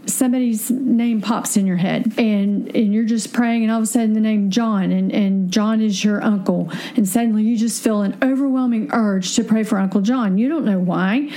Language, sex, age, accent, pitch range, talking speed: English, female, 40-59, American, 215-245 Hz, 220 wpm